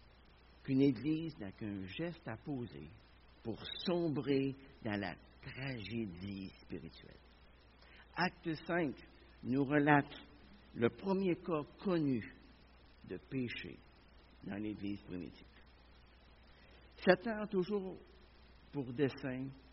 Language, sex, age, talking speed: French, male, 60-79, 95 wpm